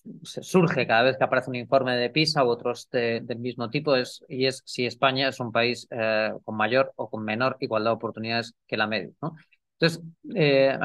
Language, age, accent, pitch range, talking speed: Spanish, 30-49, Spanish, 120-160 Hz, 210 wpm